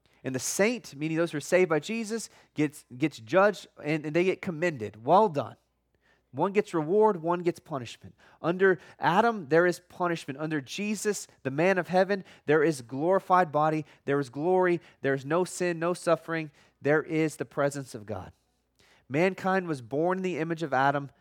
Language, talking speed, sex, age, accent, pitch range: English, 180 wpm, male, 20-39, American, 135-185 Hz